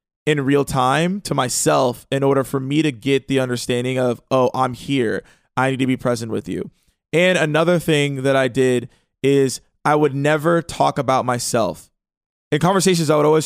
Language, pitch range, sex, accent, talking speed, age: English, 135-175 Hz, male, American, 185 wpm, 20-39